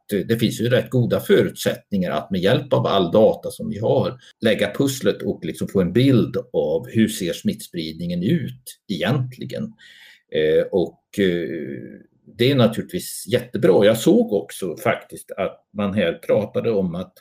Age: 60-79